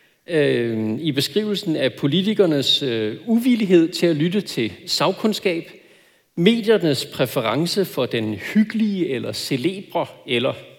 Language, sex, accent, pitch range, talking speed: Danish, male, native, 145-205 Hz, 100 wpm